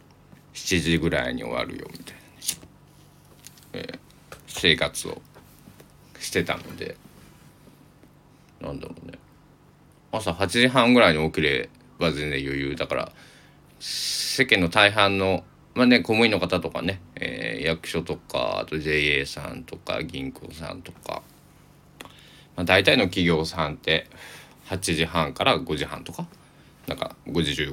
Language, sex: Japanese, male